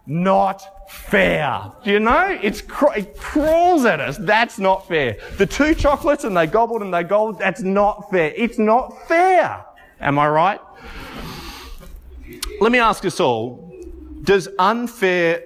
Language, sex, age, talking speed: English, male, 30-49, 145 wpm